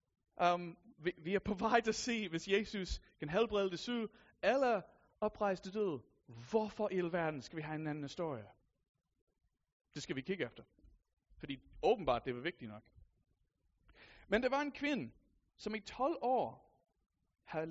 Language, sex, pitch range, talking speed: Danish, male, 165-220 Hz, 170 wpm